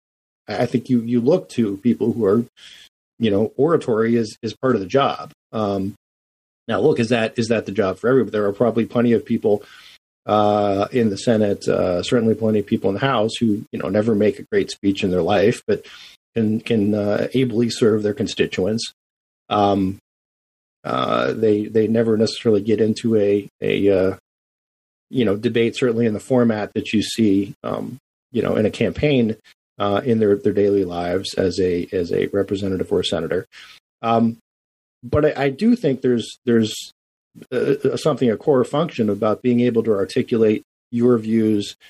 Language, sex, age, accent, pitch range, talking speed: English, male, 40-59, American, 100-115 Hz, 180 wpm